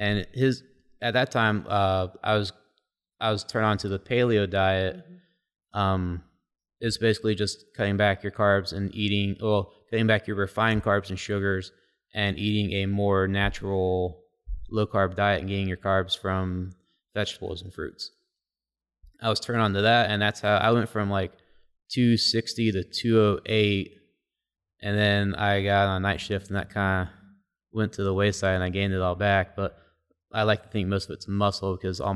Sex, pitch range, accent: male, 95-110 Hz, American